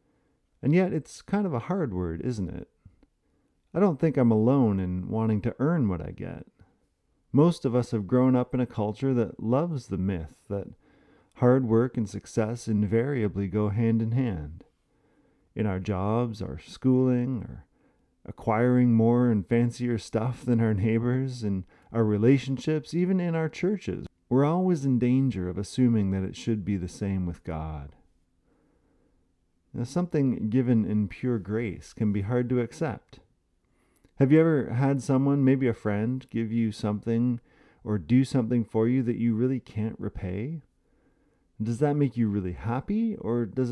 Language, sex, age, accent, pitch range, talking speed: English, male, 40-59, American, 105-130 Hz, 165 wpm